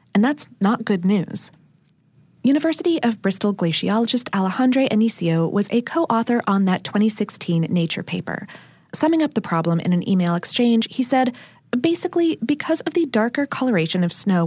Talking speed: 155 wpm